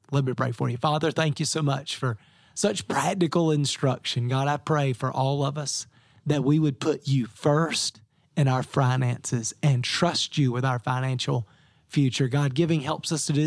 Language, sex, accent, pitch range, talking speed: English, male, American, 125-155 Hz, 190 wpm